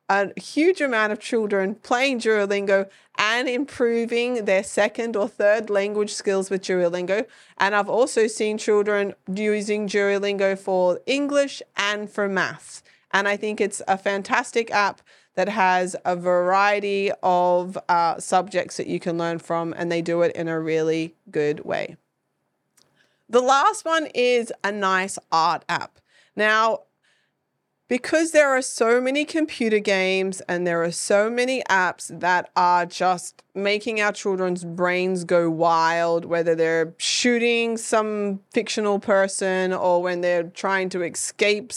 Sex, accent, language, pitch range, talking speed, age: female, Australian, English, 180-220 Hz, 145 wpm, 30-49